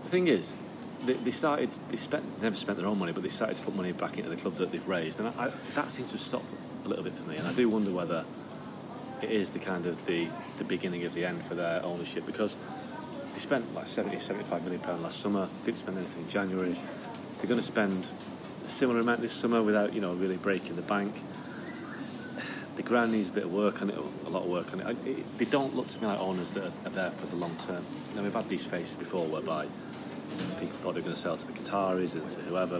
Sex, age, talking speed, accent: male, 30-49, 260 wpm, British